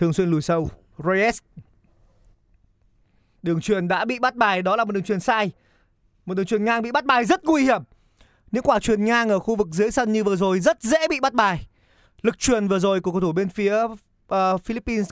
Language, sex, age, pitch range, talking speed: Vietnamese, male, 20-39, 125-210 Hz, 215 wpm